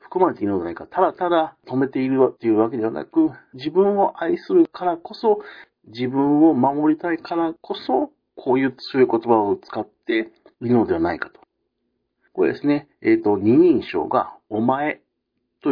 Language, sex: Japanese, male